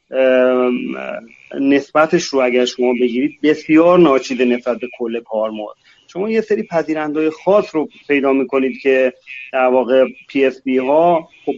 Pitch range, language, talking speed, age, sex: 130-180 Hz, Persian, 135 wpm, 30-49, male